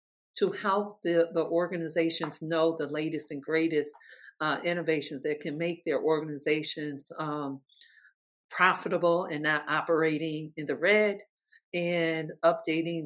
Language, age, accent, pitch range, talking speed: English, 50-69, American, 155-185 Hz, 125 wpm